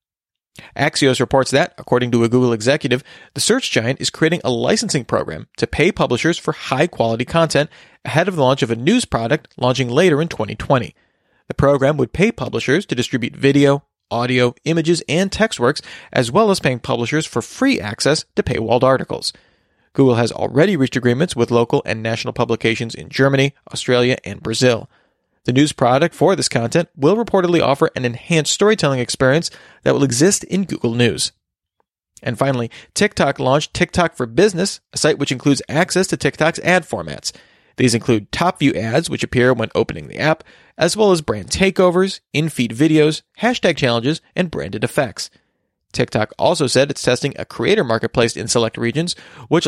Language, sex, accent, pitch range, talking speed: English, male, American, 120-160 Hz, 175 wpm